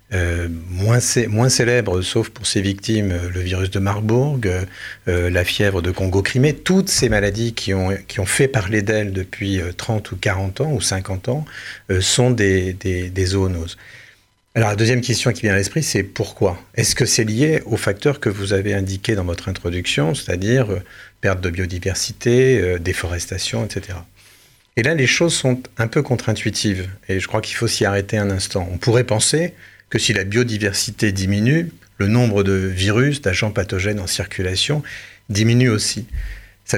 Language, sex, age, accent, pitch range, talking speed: French, male, 40-59, French, 95-125 Hz, 180 wpm